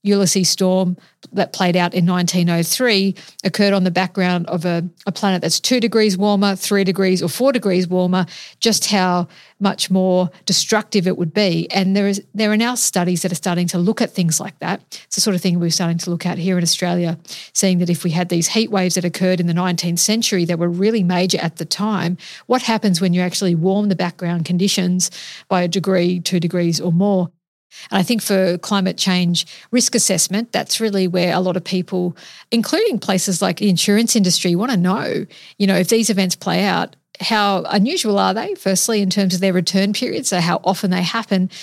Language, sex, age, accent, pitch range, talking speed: English, female, 50-69, Australian, 175-200 Hz, 210 wpm